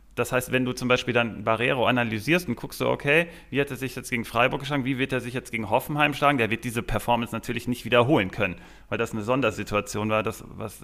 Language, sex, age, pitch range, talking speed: German, male, 30-49, 115-140 Hz, 240 wpm